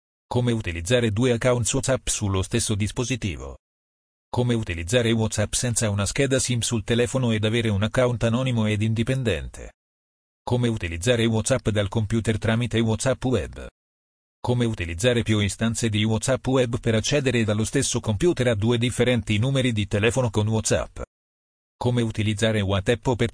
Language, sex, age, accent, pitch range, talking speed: Italian, male, 40-59, native, 105-125 Hz, 145 wpm